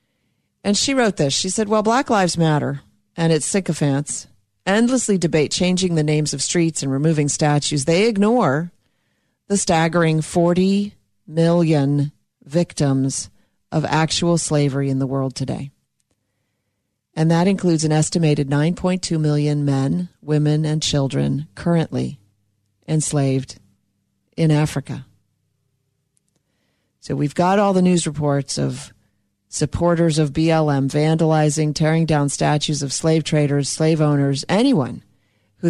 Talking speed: 125 wpm